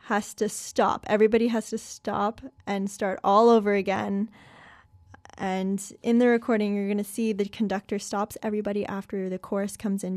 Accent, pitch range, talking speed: American, 195-220 Hz, 170 wpm